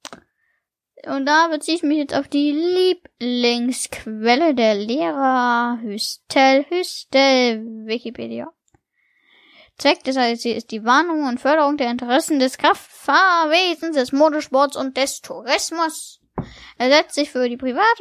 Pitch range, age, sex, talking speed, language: 240-310 Hz, 10-29, female, 125 wpm, German